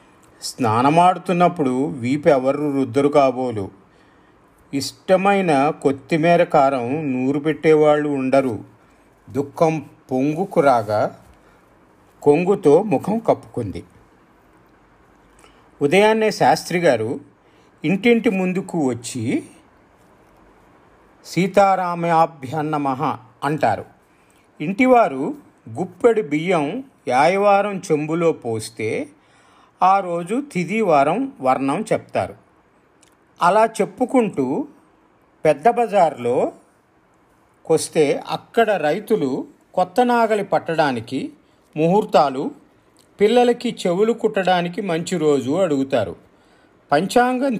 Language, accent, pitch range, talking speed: Telugu, native, 145-205 Hz, 65 wpm